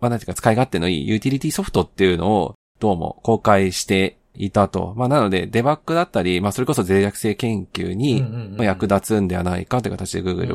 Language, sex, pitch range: Japanese, male, 90-115 Hz